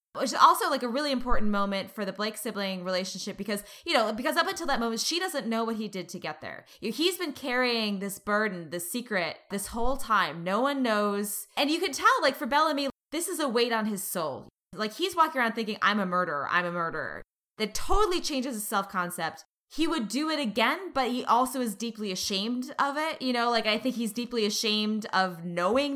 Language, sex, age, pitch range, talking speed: English, female, 20-39, 195-260 Hz, 230 wpm